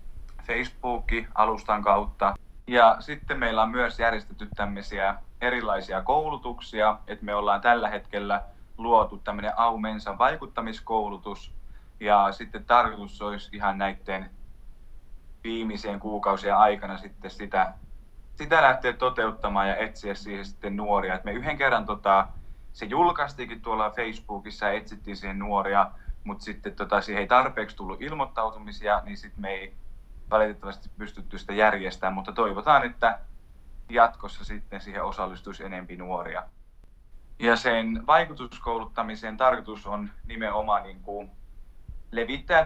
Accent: native